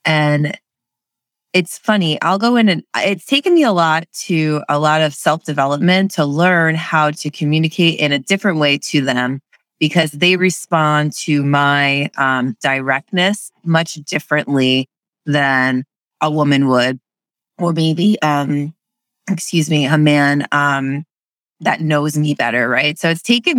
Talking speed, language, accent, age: 150 wpm, English, American, 30-49